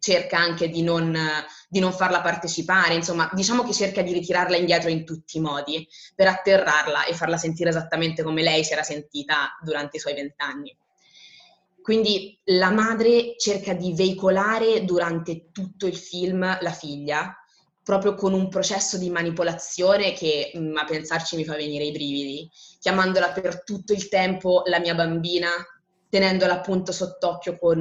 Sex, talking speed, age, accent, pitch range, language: female, 155 wpm, 20-39, native, 155-185 Hz, Italian